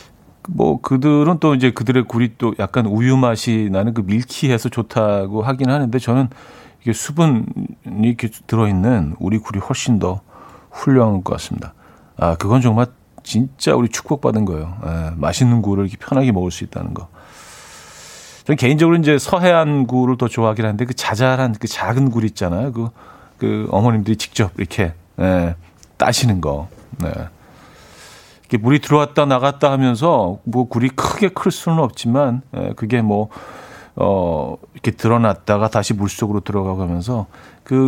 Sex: male